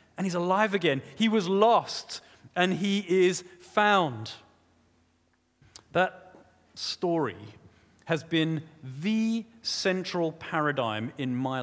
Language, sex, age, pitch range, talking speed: English, male, 30-49, 125-200 Hz, 105 wpm